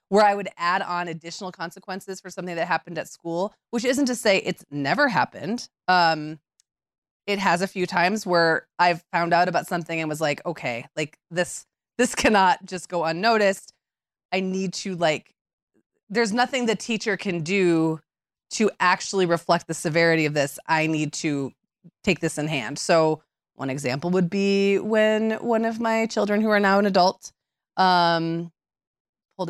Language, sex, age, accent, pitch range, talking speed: English, female, 20-39, American, 155-195 Hz, 170 wpm